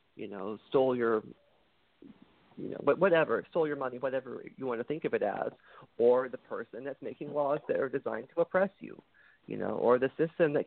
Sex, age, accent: male, 40-59, American